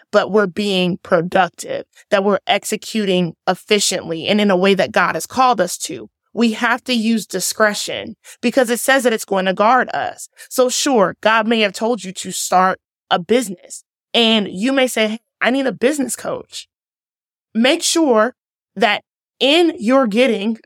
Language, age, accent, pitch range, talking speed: English, 20-39, American, 185-240 Hz, 170 wpm